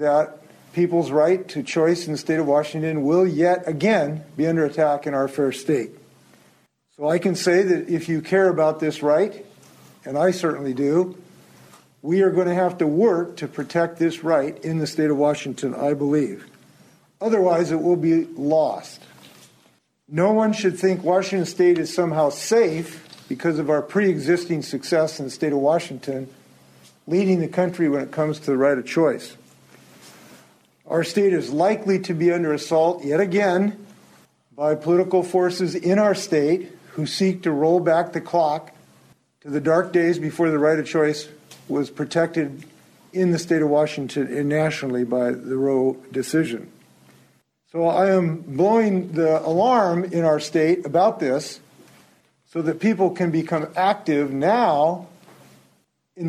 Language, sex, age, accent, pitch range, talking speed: English, male, 50-69, American, 150-180 Hz, 160 wpm